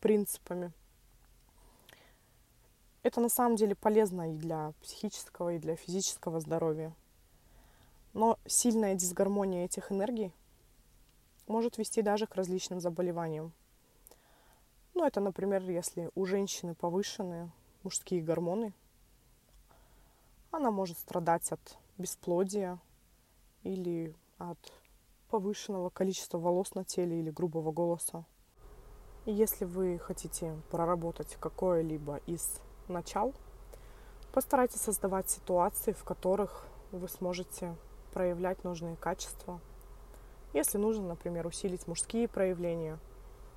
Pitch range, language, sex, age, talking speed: 165-200 Hz, Russian, female, 20-39, 100 wpm